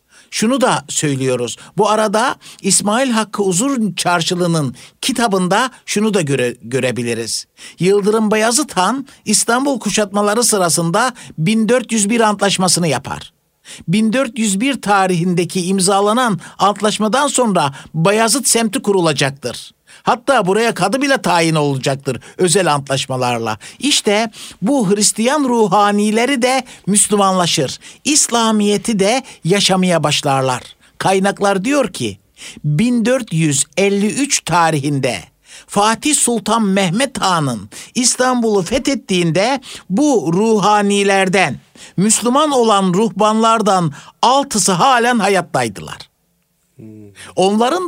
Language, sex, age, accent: Turkish, male, 60-79, native